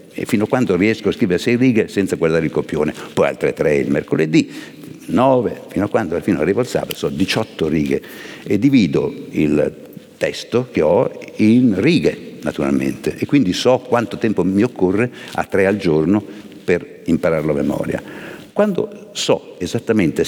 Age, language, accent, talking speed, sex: 60-79, Italian, native, 170 wpm, male